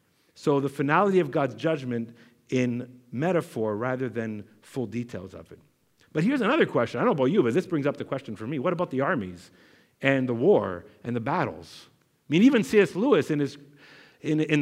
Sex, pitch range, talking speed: male, 130-180 Hz, 205 wpm